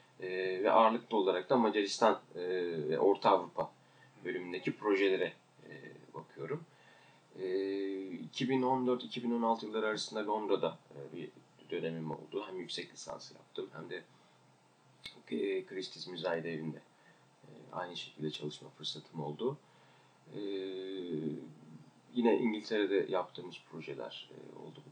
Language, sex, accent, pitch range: Turkish, male, native, 90-115 Hz